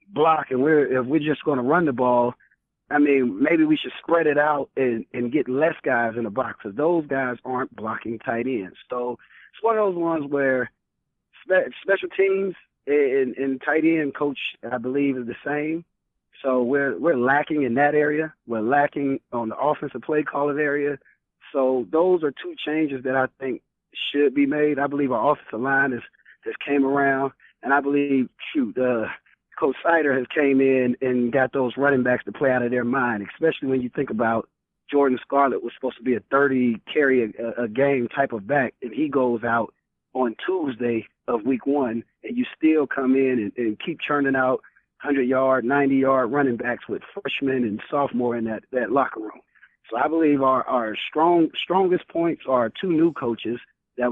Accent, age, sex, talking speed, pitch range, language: American, 30-49, male, 190 wpm, 125-150 Hz, English